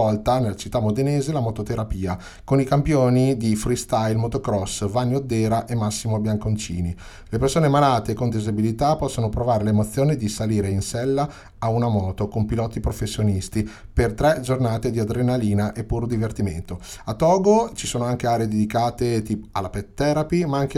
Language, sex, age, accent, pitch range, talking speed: Italian, male, 30-49, native, 105-125 Hz, 155 wpm